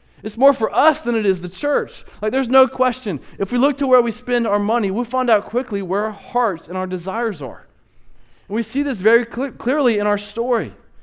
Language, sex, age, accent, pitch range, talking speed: English, male, 20-39, American, 175-250 Hz, 230 wpm